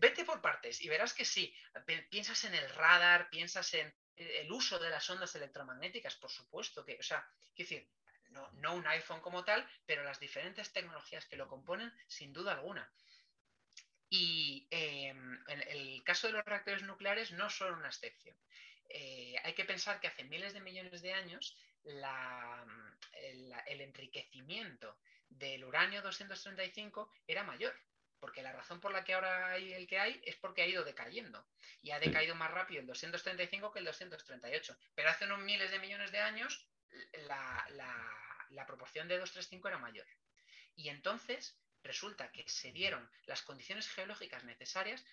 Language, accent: Spanish, Spanish